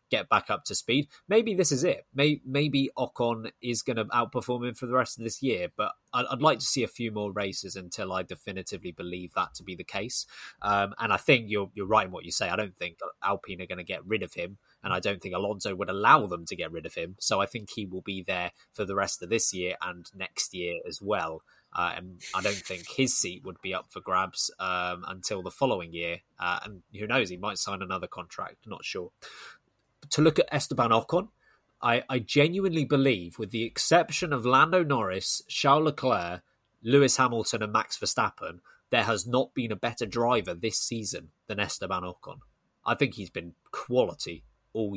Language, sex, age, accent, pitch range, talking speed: English, male, 20-39, British, 95-140 Hz, 215 wpm